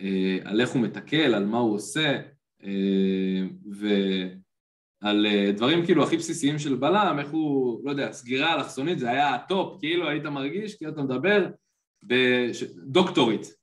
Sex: male